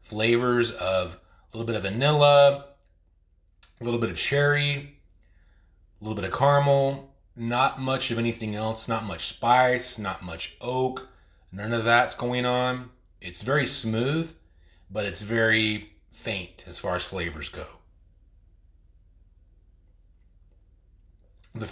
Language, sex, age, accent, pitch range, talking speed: English, male, 30-49, American, 90-120 Hz, 125 wpm